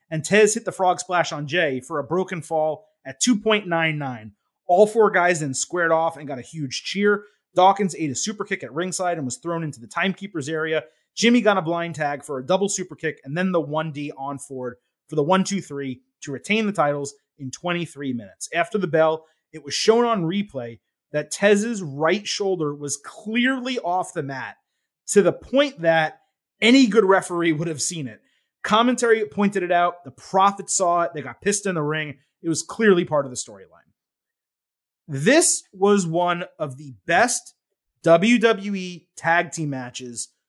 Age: 30-49